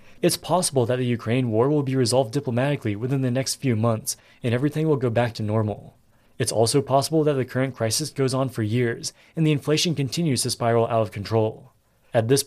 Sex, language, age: male, English, 20-39